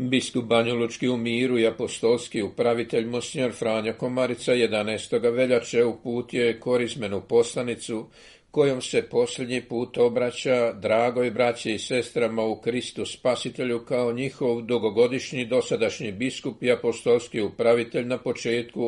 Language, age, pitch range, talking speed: Croatian, 50-69, 120-130 Hz, 120 wpm